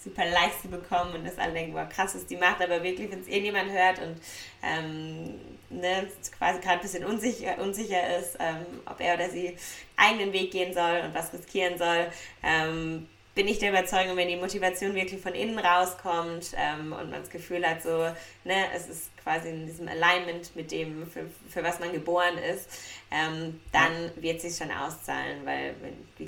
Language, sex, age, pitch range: German, female, 20-39, 160-180 Hz